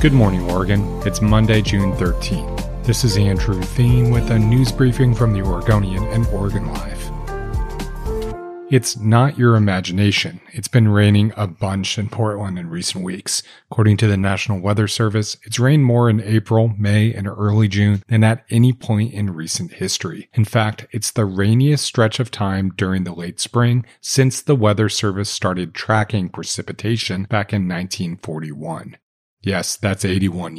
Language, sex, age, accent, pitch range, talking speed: English, male, 40-59, American, 95-115 Hz, 160 wpm